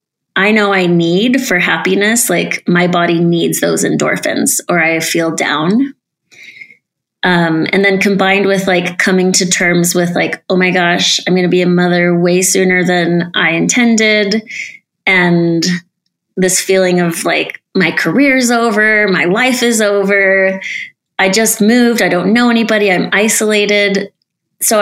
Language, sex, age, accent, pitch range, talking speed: English, female, 20-39, American, 175-210 Hz, 150 wpm